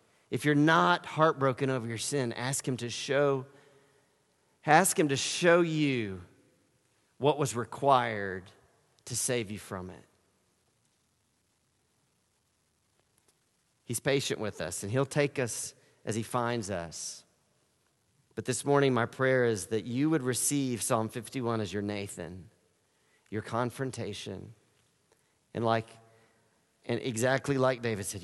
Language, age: English, 40-59